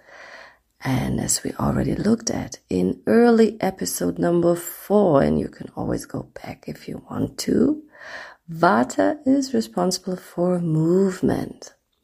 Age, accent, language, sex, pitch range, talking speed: 40-59, German, English, female, 135-215 Hz, 130 wpm